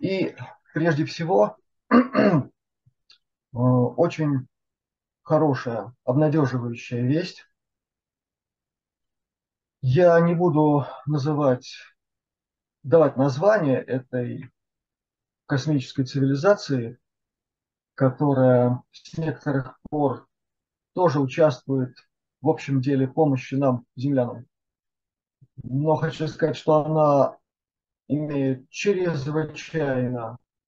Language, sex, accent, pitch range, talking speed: Russian, male, native, 130-155 Hz, 70 wpm